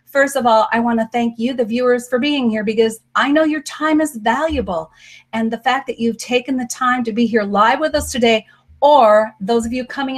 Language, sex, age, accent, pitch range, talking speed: English, female, 40-59, American, 220-265 Hz, 235 wpm